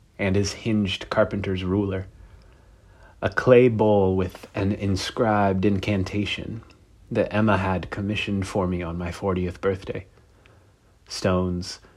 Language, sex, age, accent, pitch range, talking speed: English, male, 30-49, American, 90-105 Hz, 115 wpm